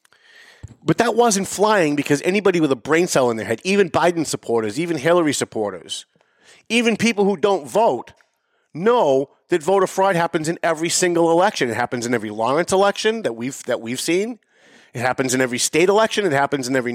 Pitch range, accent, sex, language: 135-205 Hz, American, male, English